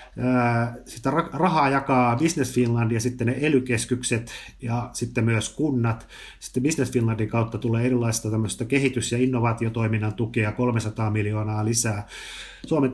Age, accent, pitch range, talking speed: 30-49, native, 110-125 Hz, 130 wpm